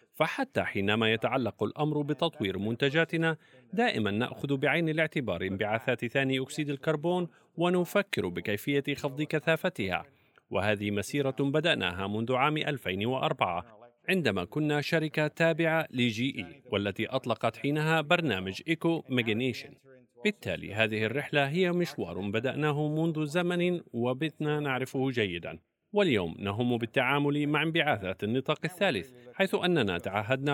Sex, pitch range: male, 115-160 Hz